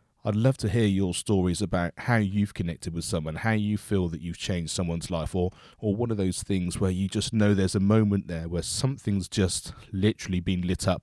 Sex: male